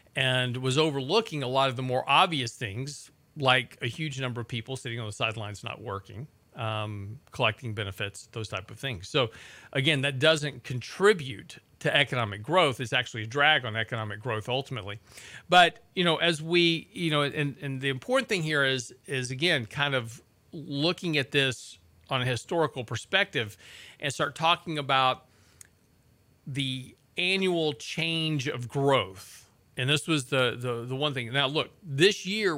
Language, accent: English, American